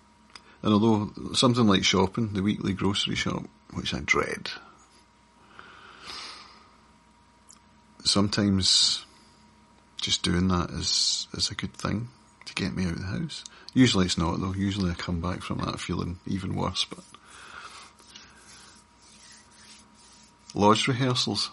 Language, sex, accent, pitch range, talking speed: English, male, British, 95-110 Hz, 125 wpm